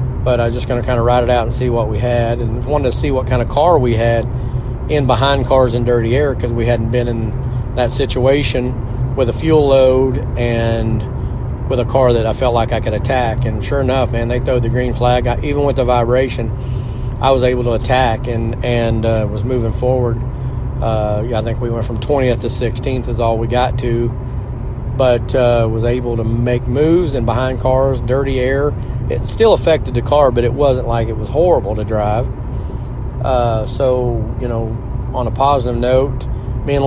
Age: 40-59